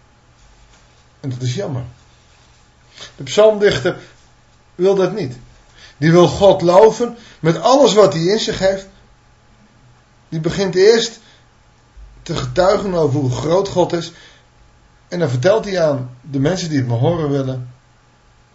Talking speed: 135 wpm